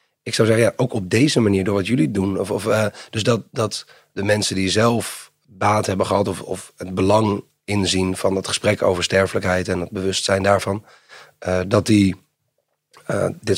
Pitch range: 95-105 Hz